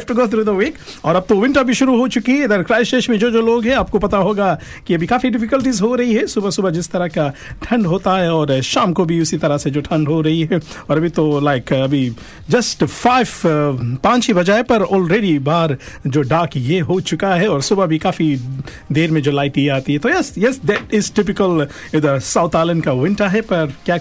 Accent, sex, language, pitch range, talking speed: native, male, Hindi, 155-220 Hz, 170 wpm